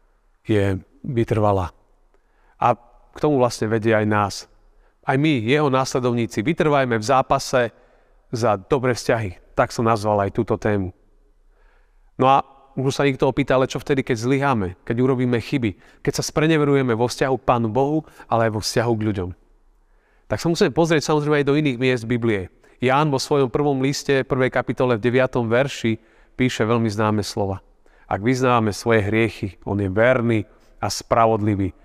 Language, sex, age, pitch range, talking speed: Slovak, male, 40-59, 110-135 Hz, 160 wpm